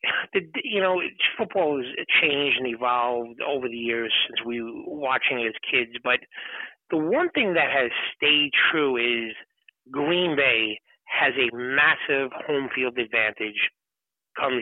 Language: English